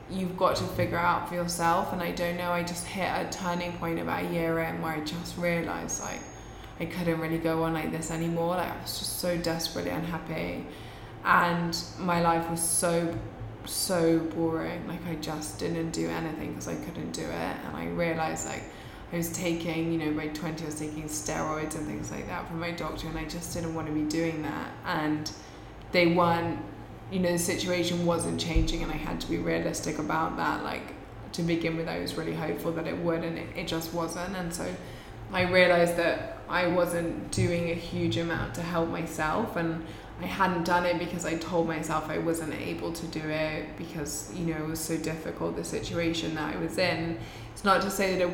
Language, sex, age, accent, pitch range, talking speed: French, female, 20-39, British, 160-175 Hz, 210 wpm